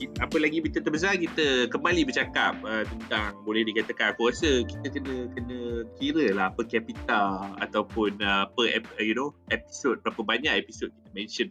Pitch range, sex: 100-120 Hz, male